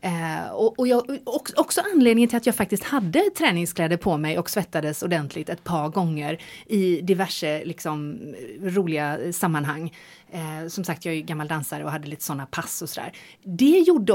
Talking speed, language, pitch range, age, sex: 185 wpm, Swedish, 165-245 Hz, 30-49, female